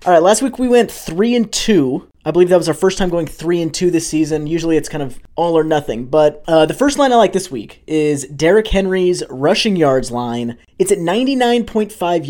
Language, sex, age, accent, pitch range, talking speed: English, male, 20-39, American, 155-215 Hz, 230 wpm